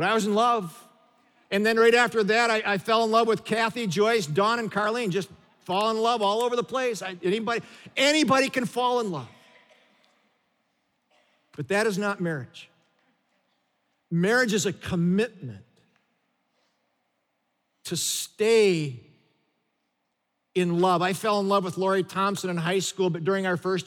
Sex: male